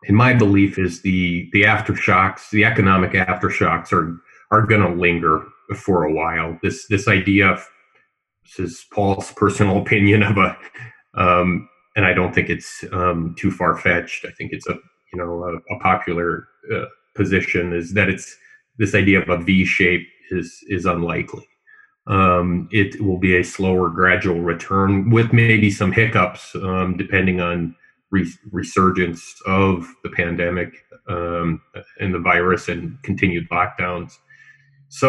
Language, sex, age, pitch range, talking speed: English, male, 30-49, 90-105 Hz, 150 wpm